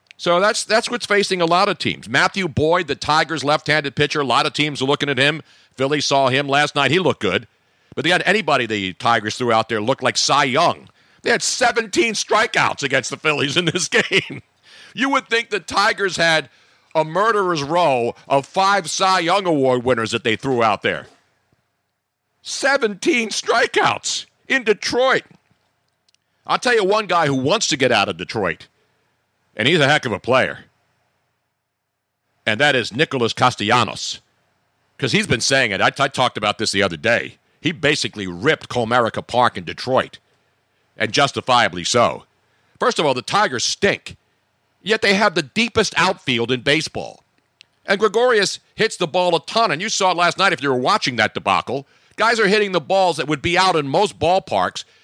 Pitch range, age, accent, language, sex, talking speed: 125-195 Hz, 50-69, American, English, male, 185 wpm